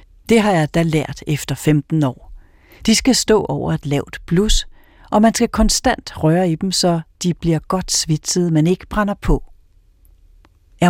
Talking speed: 175 wpm